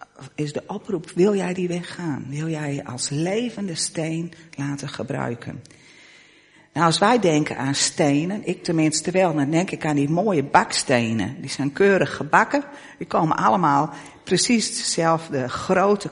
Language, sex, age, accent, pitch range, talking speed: Dutch, female, 50-69, Dutch, 140-200 Hz, 155 wpm